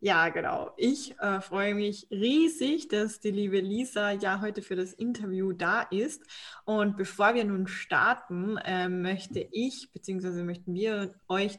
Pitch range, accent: 185-225 Hz, German